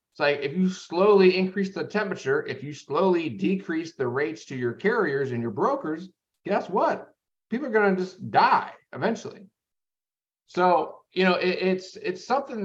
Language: English